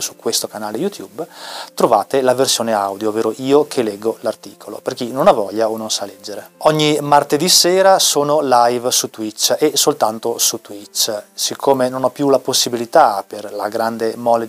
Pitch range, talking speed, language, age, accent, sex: 110-135 Hz, 180 wpm, Italian, 30-49, native, male